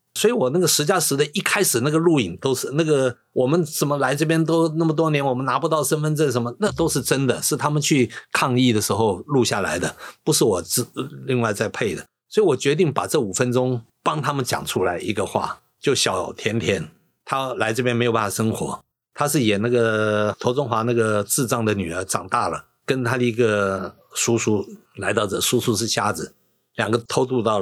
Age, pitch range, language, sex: 50-69, 115-155 Hz, Chinese, male